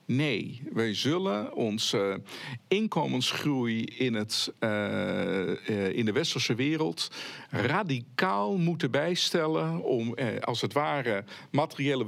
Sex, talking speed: male, 95 wpm